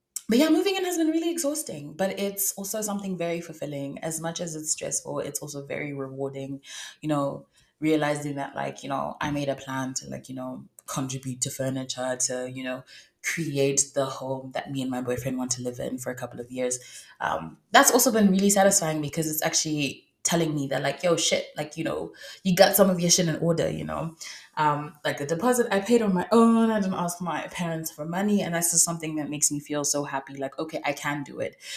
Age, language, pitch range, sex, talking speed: 20-39, English, 140-180 Hz, female, 230 wpm